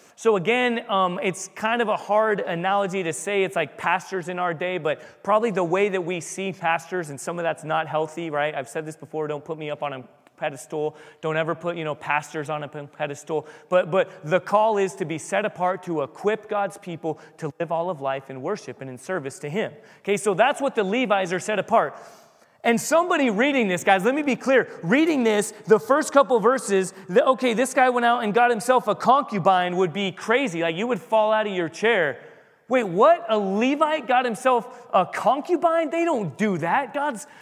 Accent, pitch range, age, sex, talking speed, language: American, 175-235 Hz, 30-49, male, 220 wpm, English